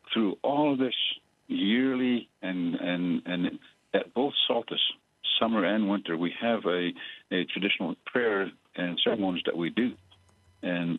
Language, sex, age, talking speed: English, male, 60-79, 140 wpm